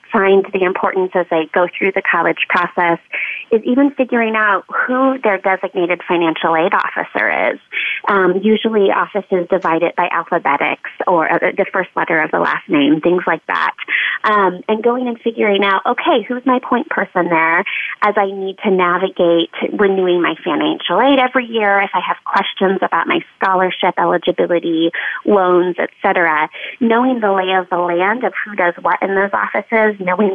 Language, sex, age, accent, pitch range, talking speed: English, female, 30-49, American, 180-215 Hz, 170 wpm